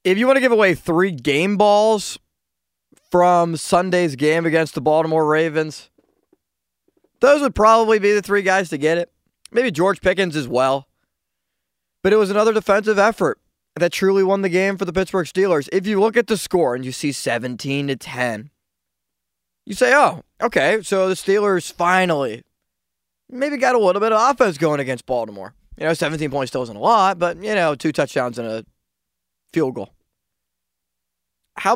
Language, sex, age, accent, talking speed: English, male, 20-39, American, 180 wpm